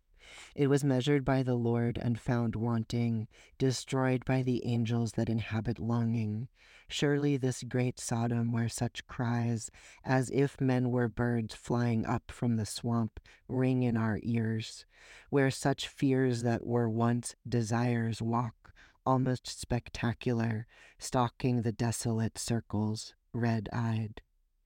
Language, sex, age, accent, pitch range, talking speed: English, male, 40-59, American, 110-125 Hz, 125 wpm